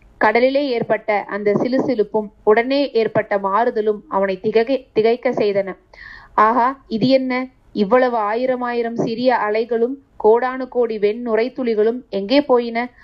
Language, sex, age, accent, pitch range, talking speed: Tamil, female, 30-49, native, 215-260 Hz, 120 wpm